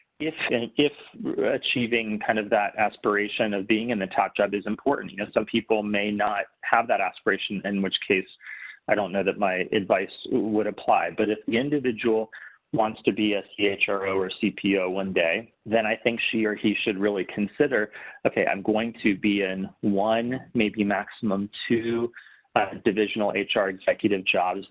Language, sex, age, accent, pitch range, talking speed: English, male, 30-49, American, 100-120 Hz, 175 wpm